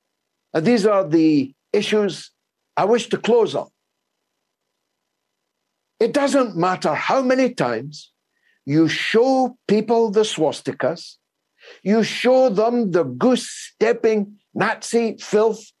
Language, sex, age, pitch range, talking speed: English, male, 60-79, 205-255 Hz, 105 wpm